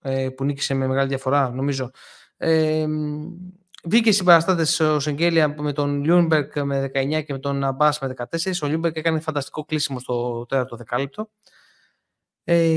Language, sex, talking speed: Greek, male, 150 wpm